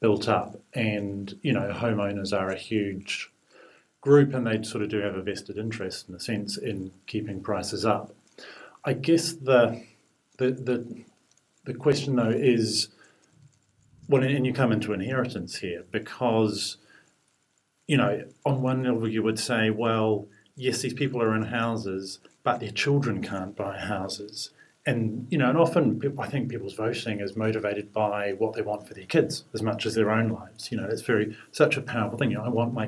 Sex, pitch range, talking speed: male, 105-125 Hz, 185 wpm